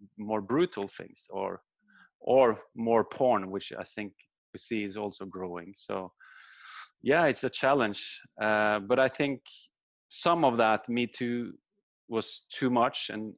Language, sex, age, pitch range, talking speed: English, male, 30-49, 100-120 Hz, 150 wpm